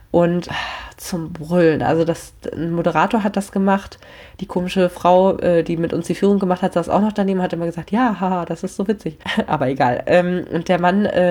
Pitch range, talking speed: 160-190 Hz, 195 wpm